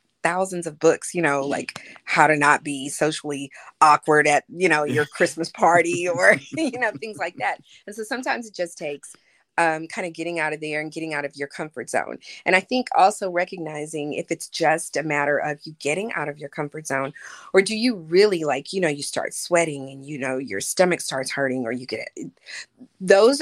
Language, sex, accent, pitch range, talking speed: English, female, American, 140-175 Hz, 215 wpm